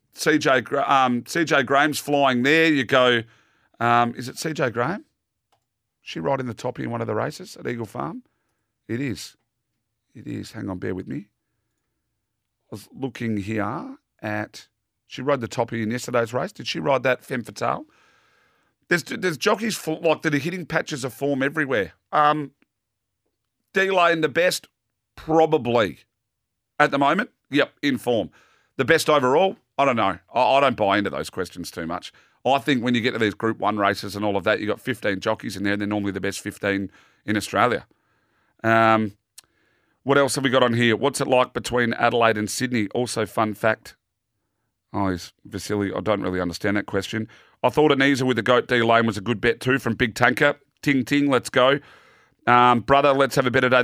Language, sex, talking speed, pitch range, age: English, male, 190 wpm, 110-140 Hz, 40-59